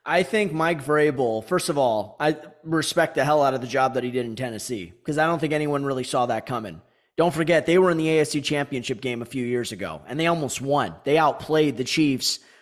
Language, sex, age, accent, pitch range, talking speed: English, male, 30-49, American, 135-170 Hz, 240 wpm